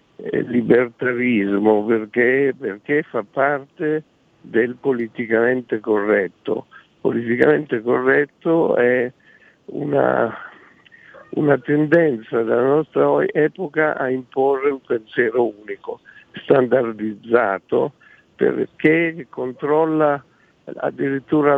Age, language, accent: 60-79, Italian, native